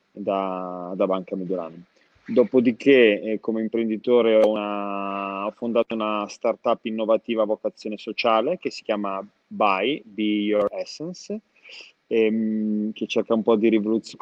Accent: native